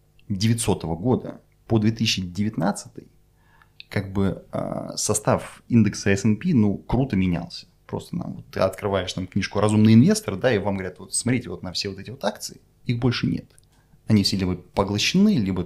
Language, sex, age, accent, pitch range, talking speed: Russian, male, 20-39, native, 100-125 Hz, 155 wpm